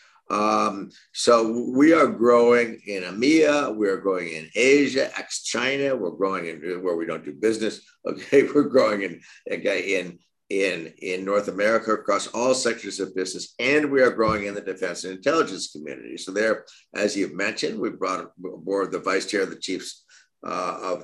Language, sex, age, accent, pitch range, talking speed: English, male, 50-69, American, 90-115 Hz, 175 wpm